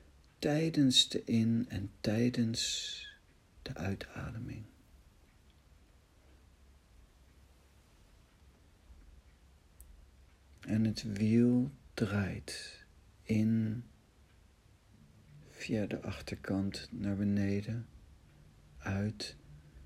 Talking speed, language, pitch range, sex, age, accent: 55 wpm, Dutch, 75-110 Hz, male, 60-79, Dutch